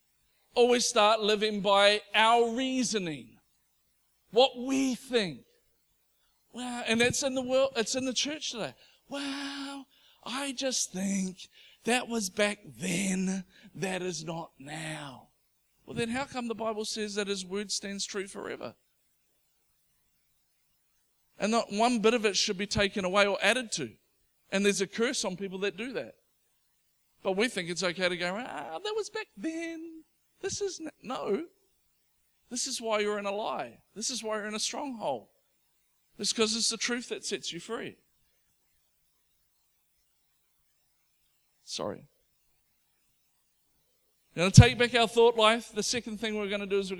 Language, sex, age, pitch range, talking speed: English, male, 50-69, 185-240 Hz, 155 wpm